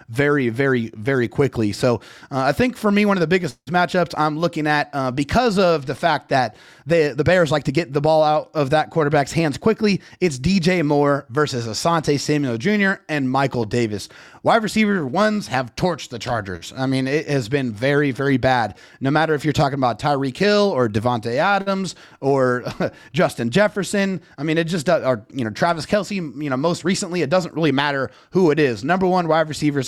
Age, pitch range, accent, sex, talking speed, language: 30-49, 135-170 Hz, American, male, 205 wpm, English